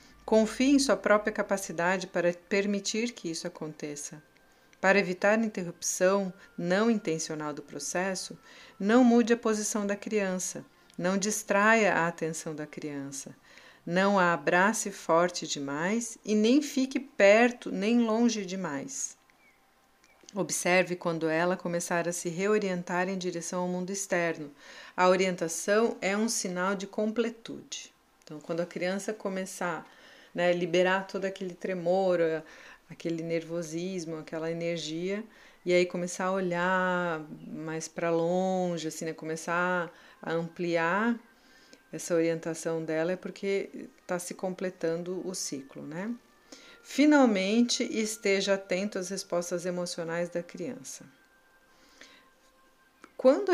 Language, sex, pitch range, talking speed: Portuguese, female, 170-215 Hz, 120 wpm